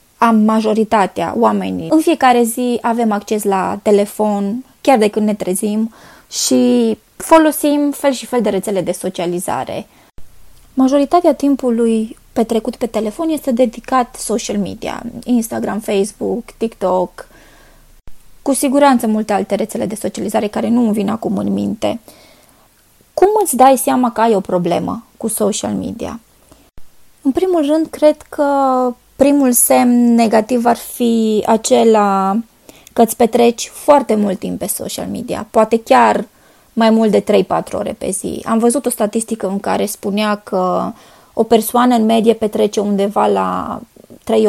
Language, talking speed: Romanian, 145 wpm